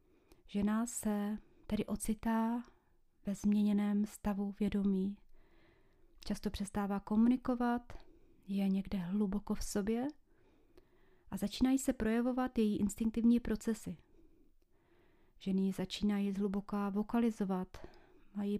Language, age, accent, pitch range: Czech, 30-49, native, 205-235 Hz